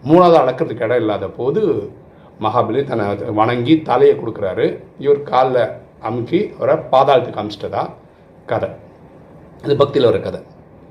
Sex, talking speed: male, 115 wpm